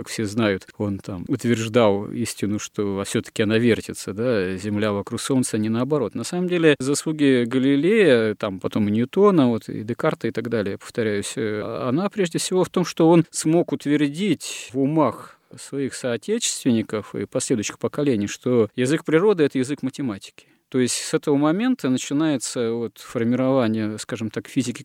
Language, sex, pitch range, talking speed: Russian, male, 115-145 Hz, 155 wpm